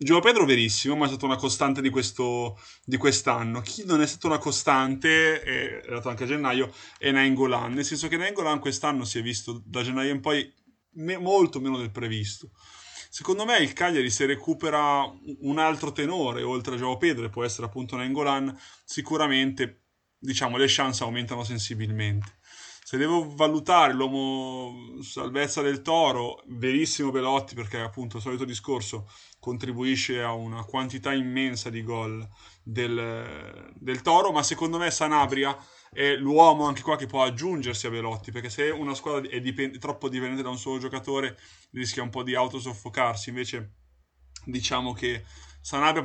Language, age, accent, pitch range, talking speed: Italian, 20-39, native, 120-140 Hz, 160 wpm